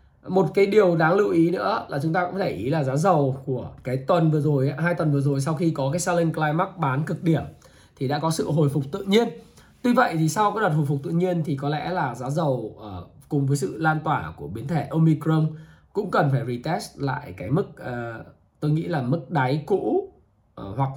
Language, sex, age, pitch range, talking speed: Vietnamese, male, 20-39, 130-170 Hz, 230 wpm